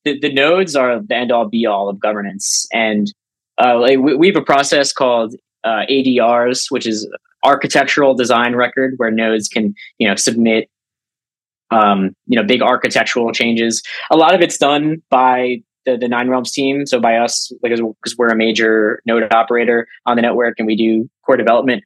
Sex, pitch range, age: male, 110-130 Hz, 20-39